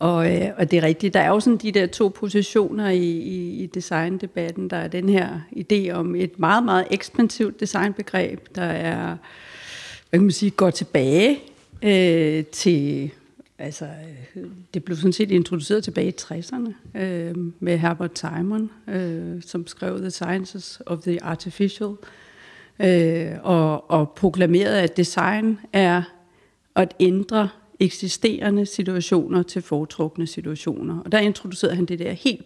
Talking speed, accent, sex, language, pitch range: 150 wpm, native, female, Danish, 170-195 Hz